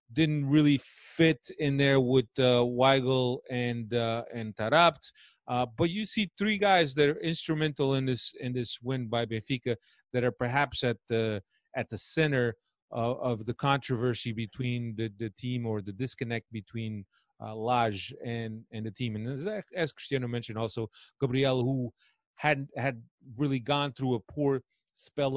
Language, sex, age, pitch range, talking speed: English, male, 30-49, 120-160 Hz, 165 wpm